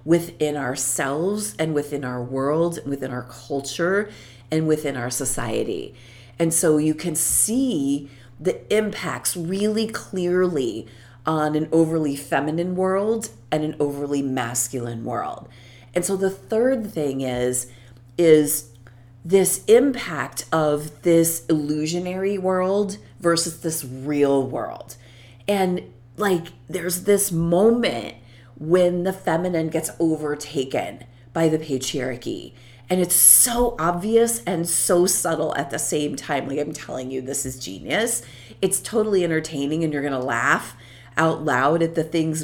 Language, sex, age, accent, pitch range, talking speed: English, female, 40-59, American, 130-175 Hz, 130 wpm